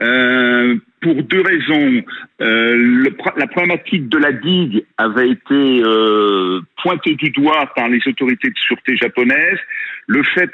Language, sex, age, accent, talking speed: French, male, 50-69, French, 140 wpm